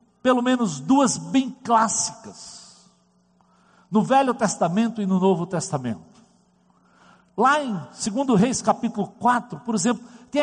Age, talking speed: 60-79, 120 wpm